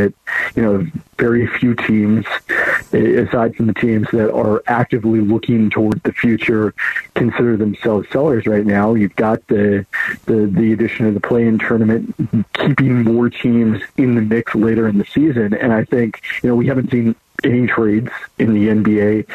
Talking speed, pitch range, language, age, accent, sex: 170 wpm, 105-120 Hz, English, 50-69, American, male